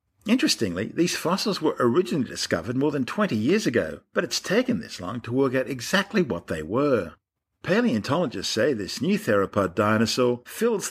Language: English